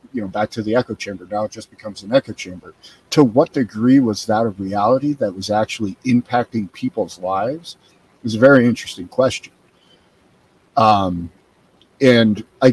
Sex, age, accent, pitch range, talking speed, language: male, 50-69, American, 100-120 Hz, 170 wpm, English